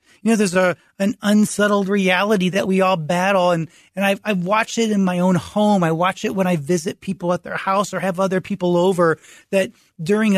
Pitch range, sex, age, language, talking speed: 175-215 Hz, male, 30-49, English, 220 wpm